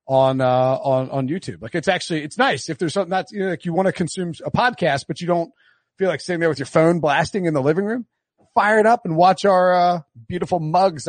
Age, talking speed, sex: 40-59, 255 wpm, male